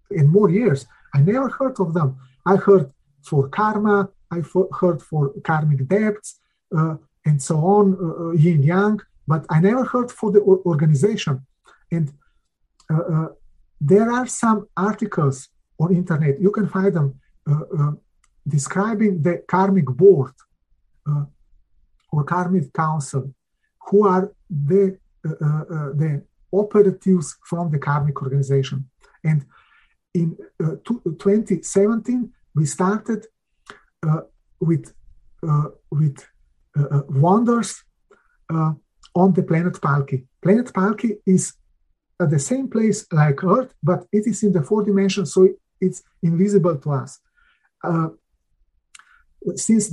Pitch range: 150-200 Hz